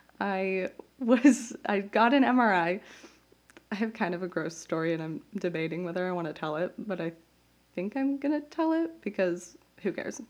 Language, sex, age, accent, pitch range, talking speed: English, female, 20-39, American, 175-230 Hz, 190 wpm